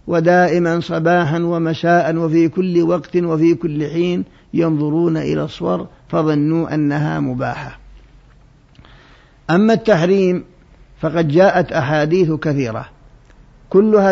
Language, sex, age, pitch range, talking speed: Arabic, male, 50-69, 150-175 Hz, 95 wpm